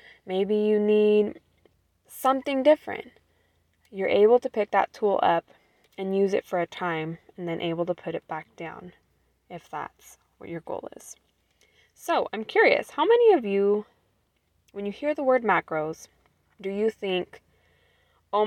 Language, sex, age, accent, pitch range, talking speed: English, female, 20-39, American, 175-235 Hz, 160 wpm